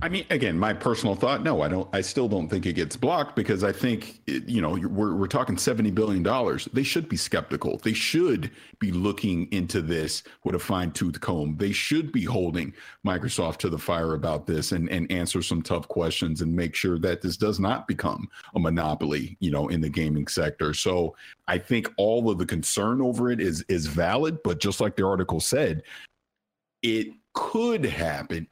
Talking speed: 200 wpm